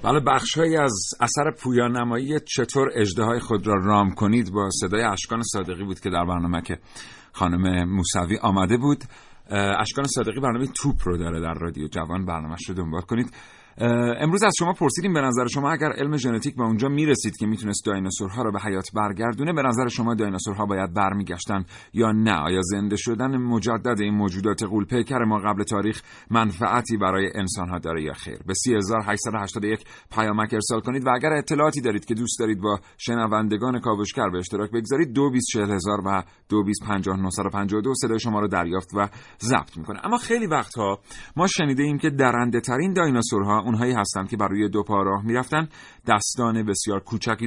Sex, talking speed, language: male, 170 wpm, Persian